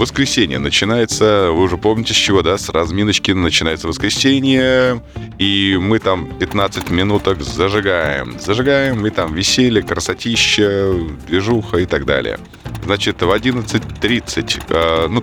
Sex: male